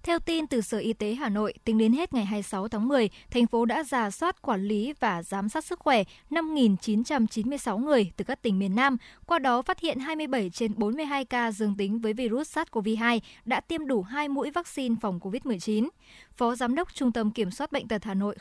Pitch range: 215-280 Hz